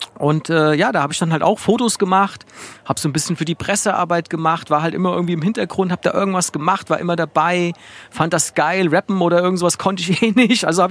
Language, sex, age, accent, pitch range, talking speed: German, male, 40-59, German, 150-195 Hz, 240 wpm